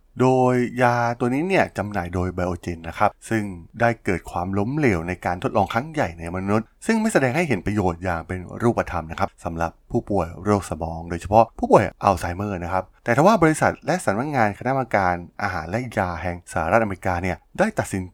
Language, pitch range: Thai, 90-115 Hz